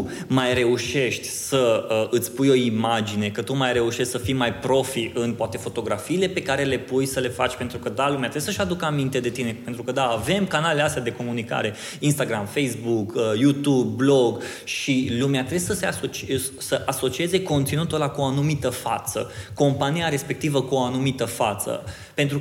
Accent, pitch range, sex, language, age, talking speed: native, 125-160 Hz, male, Romanian, 20-39, 185 wpm